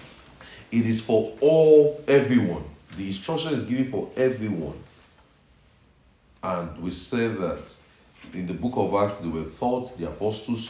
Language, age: English, 40-59